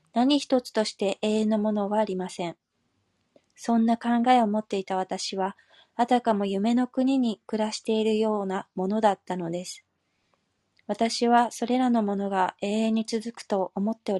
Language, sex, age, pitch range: Japanese, female, 20-39, 200-235 Hz